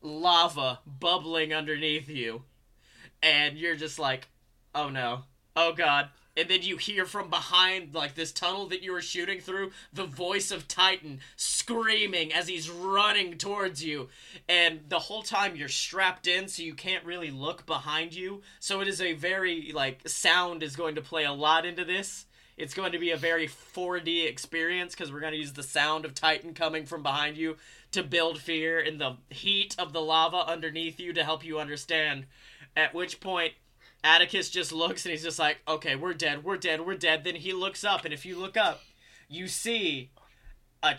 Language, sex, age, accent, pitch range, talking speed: English, male, 20-39, American, 155-185 Hz, 190 wpm